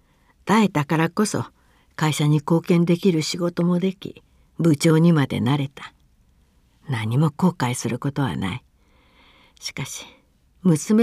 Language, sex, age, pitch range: Japanese, female, 60-79, 130-205 Hz